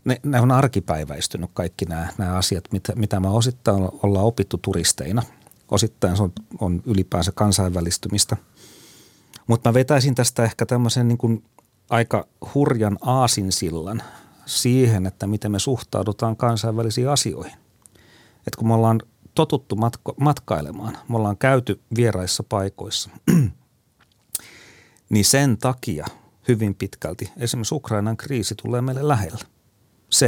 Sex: male